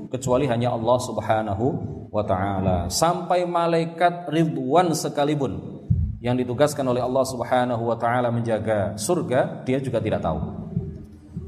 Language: Indonesian